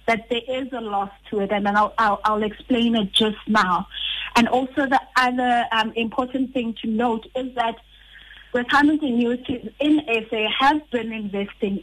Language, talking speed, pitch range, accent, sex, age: English, 165 wpm, 210-245 Hz, South African, female, 30-49